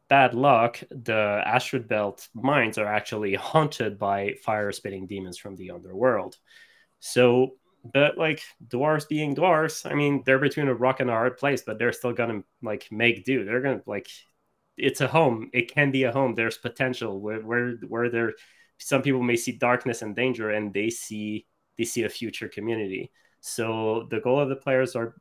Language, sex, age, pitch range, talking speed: English, male, 20-39, 100-125 Hz, 185 wpm